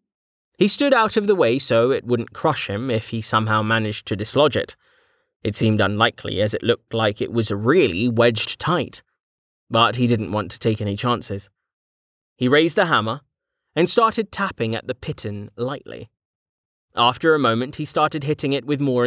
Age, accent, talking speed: 20-39, British, 185 wpm